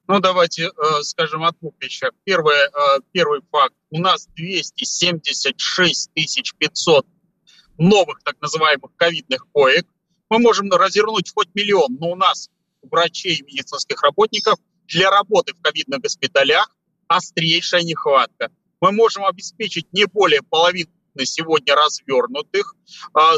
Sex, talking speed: male, 120 wpm